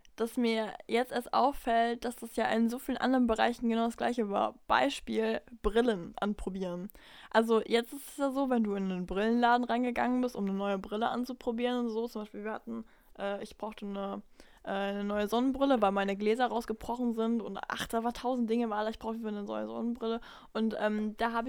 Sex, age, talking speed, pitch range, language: female, 10-29, 205 wpm, 215-245 Hz, German